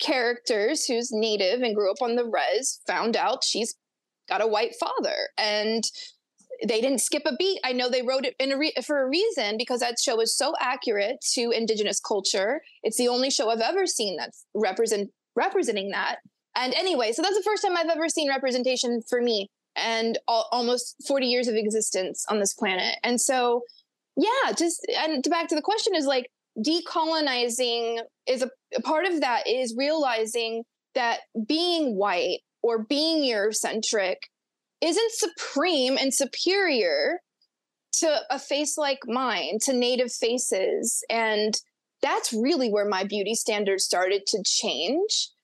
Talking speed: 165 wpm